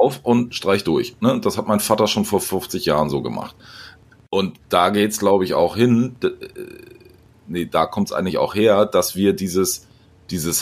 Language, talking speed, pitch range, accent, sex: German, 180 wpm, 95-125 Hz, German, male